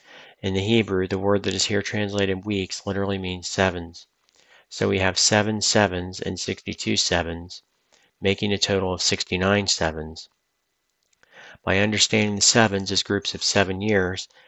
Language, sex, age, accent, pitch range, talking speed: English, male, 40-59, American, 95-100 Hz, 150 wpm